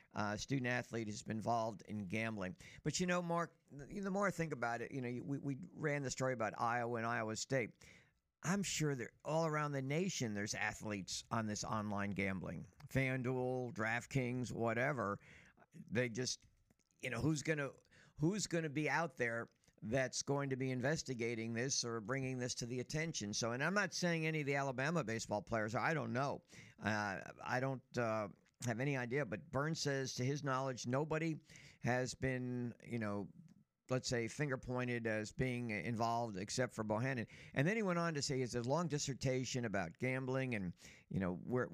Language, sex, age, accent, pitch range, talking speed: English, male, 60-79, American, 110-140 Hz, 185 wpm